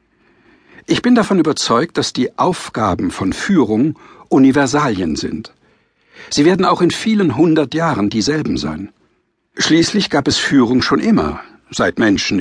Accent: German